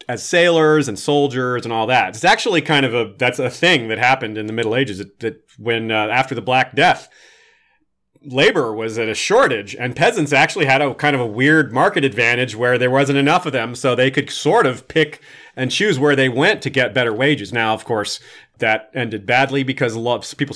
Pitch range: 115-145 Hz